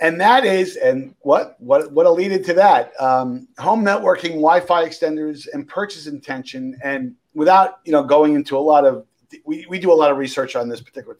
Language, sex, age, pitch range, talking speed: English, male, 50-69, 125-175 Hz, 200 wpm